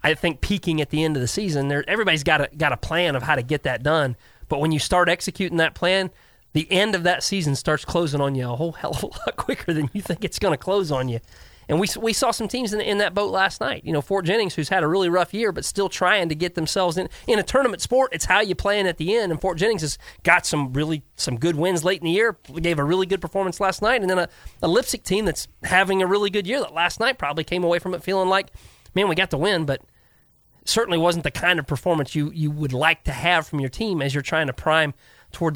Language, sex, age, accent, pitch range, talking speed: English, male, 30-49, American, 140-180 Hz, 280 wpm